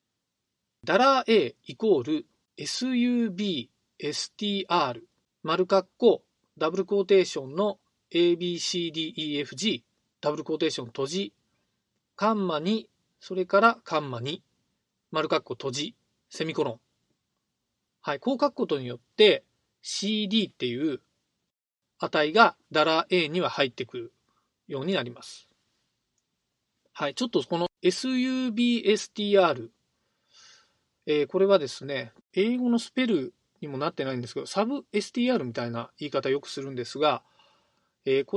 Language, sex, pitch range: Japanese, male, 150-225 Hz